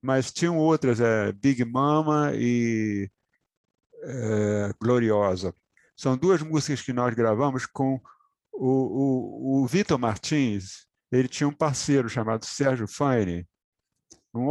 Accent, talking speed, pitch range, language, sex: Brazilian, 125 wpm, 125-170 Hz, Portuguese, male